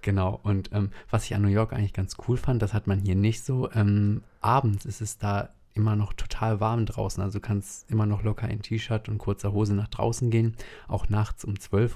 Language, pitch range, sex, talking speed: German, 95-110 Hz, male, 235 wpm